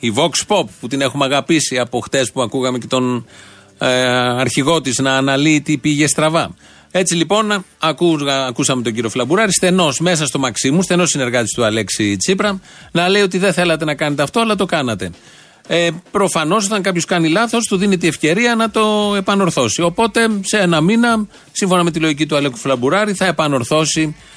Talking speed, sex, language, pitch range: 180 wpm, male, Greek, 135-180 Hz